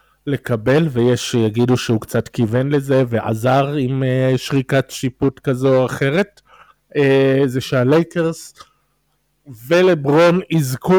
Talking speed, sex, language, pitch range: 100 wpm, male, Hebrew, 135-175 Hz